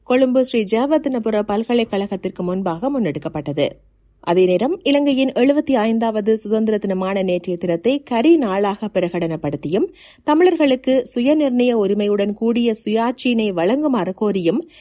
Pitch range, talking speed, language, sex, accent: 185-255 Hz, 90 wpm, Tamil, female, native